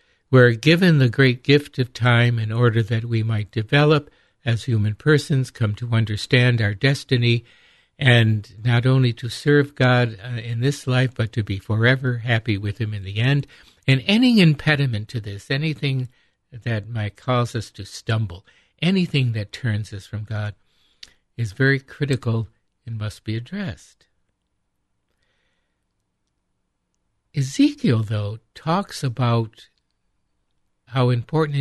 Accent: American